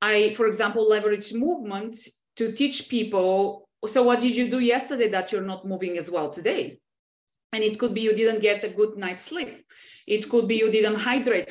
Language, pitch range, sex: English, 185-240 Hz, female